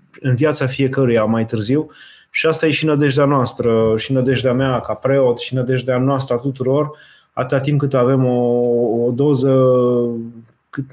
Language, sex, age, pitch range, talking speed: Romanian, male, 20-39, 120-135 Hz, 160 wpm